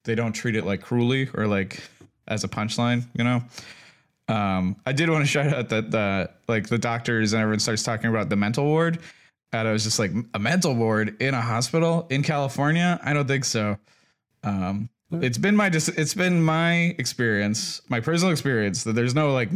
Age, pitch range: 20-39, 105-130 Hz